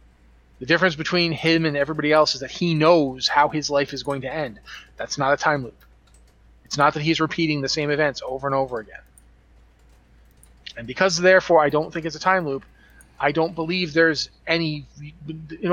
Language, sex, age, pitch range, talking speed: English, male, 30-49, 130-160 Hz, 195 wpm